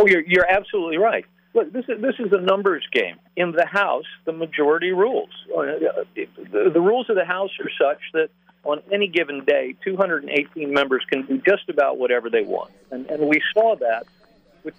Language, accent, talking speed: English, American, 185 wpm